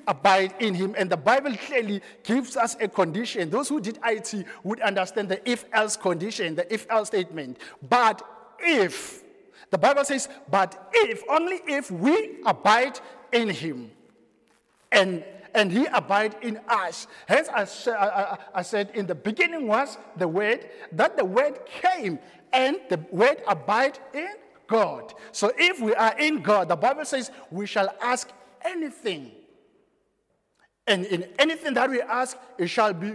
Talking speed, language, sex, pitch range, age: 150 wpm, English, male, 195-260 Hz, 50-69